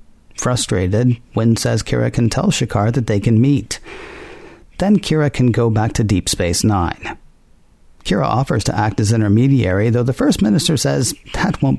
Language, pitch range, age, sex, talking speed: English, 105-135 Hz, 50-69, male, 170 wpm